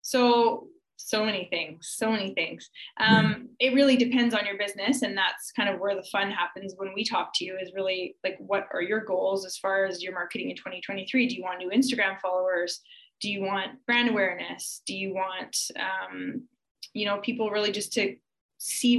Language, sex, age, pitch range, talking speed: English, female, 20-39, 190-245 Hz, 200 wpm